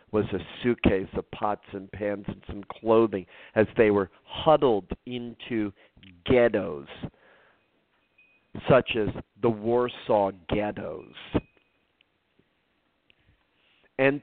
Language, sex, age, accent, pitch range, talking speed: English, male, 50-69, American, 105-135 Hz, 95 wpm